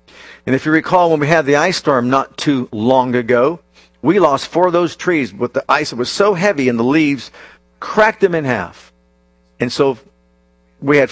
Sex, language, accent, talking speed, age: male, English, American, 200 wpm, 50-69